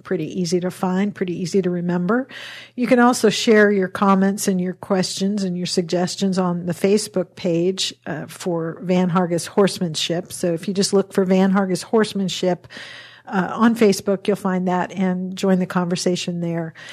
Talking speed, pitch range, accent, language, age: 175 wpm, 175-205 Hz, American, English, 50-69